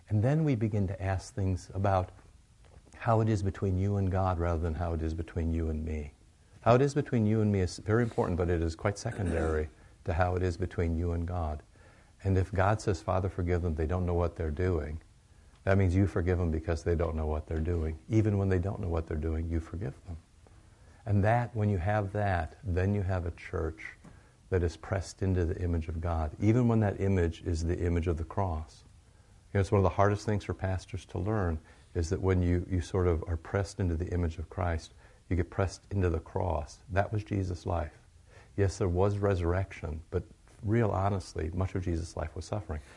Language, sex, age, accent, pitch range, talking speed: English, male, 60-79, American, 85-105 Hz, 220 wpm